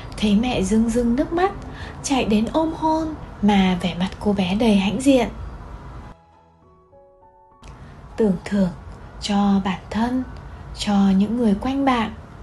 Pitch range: 190-235 Hz